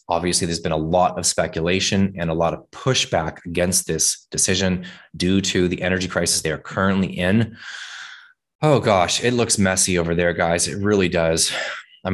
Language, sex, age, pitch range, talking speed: English, male, 20-39, 80-95 Hz, 180 wpm